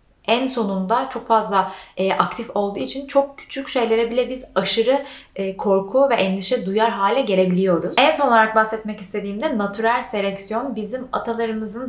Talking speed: 150 wpm